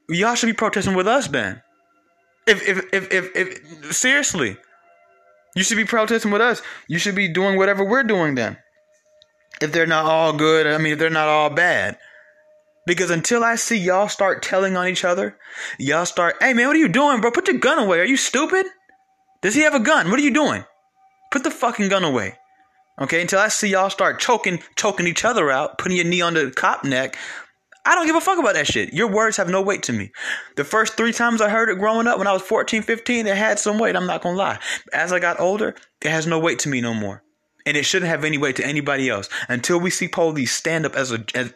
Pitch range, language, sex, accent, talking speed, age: 155-230 Hz, English, male, American, 240 wpm, 20-39